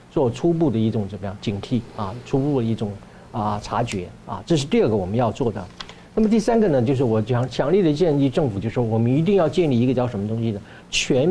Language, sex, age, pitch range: Chinese, male, 50-69, 110-140 Hz